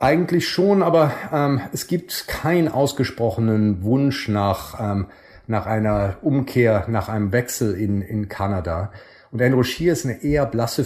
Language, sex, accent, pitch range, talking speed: German, male, German, 100-120 Hz, 150 wpm